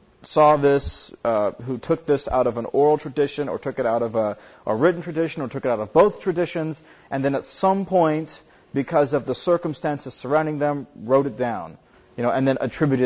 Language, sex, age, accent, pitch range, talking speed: English, male, 40-59, American, 115-145 Hz, 210 wpm